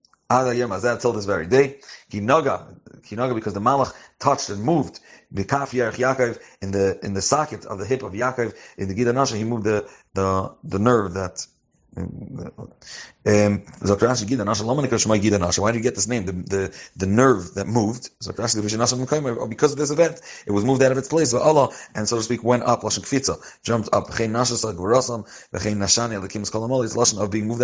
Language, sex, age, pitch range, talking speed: English, male, 30-49, 100-125 Hz, 155 wpm